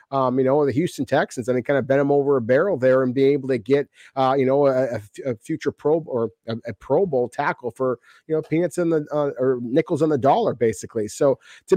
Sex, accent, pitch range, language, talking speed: male, American, 125-155 Hz, English, 250 wpm